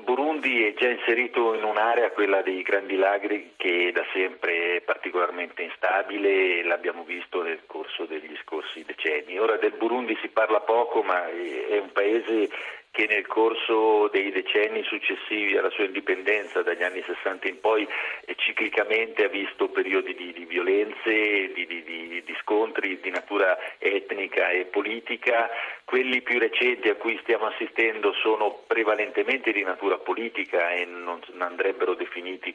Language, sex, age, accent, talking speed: Italian, male, 50-69, native, 155 wpm